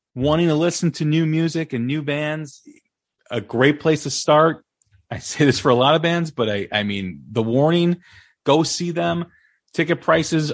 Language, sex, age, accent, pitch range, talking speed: English, male, 30-49, American, 105-155 Hz, 190 wpm